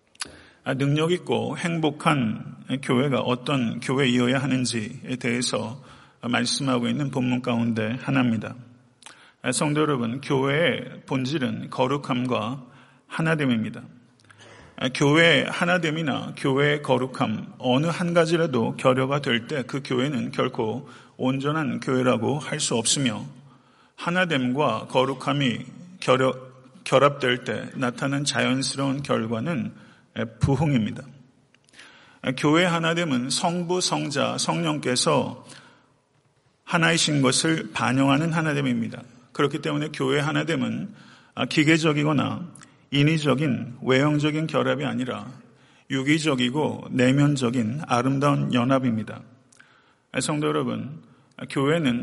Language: Korean